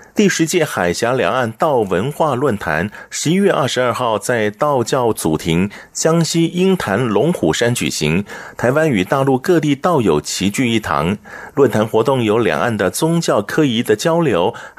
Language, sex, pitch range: Chinese, male, 110-160 Hz